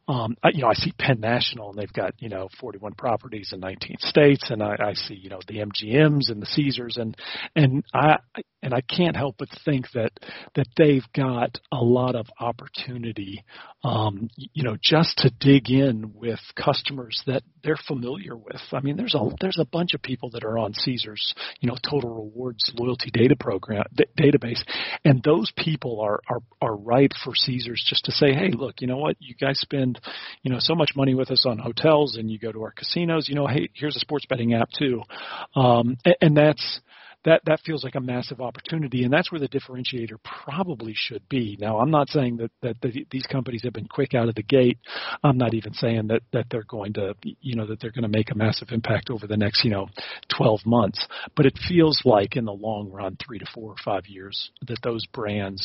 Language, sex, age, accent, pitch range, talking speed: English, male, 40-59, American, 110-140 Hz, 220 wpm